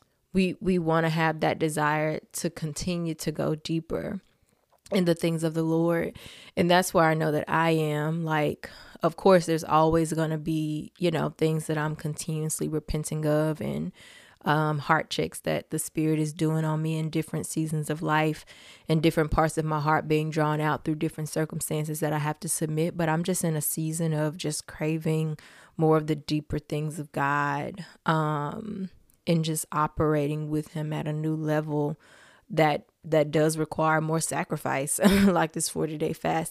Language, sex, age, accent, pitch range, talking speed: English, female, 20-39, American, 155-165 Hz, 185 wpm